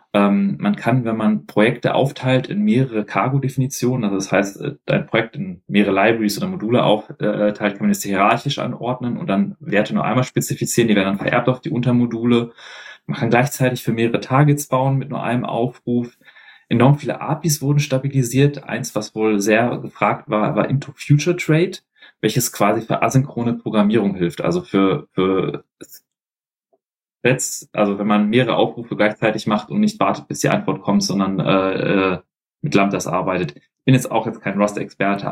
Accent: German